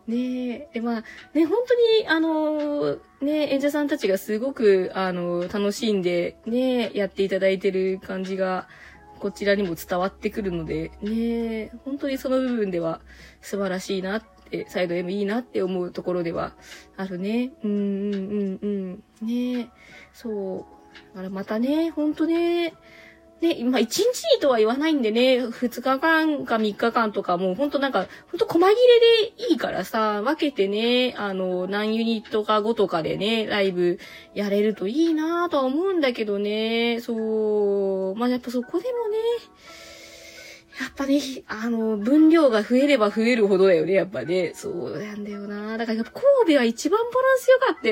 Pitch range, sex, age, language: 205-295 Hz, female, 20-39, Japanese